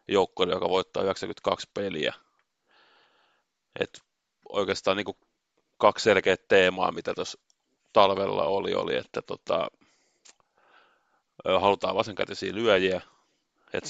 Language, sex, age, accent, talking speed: Finnish, male, 30-49, native, 85 wpm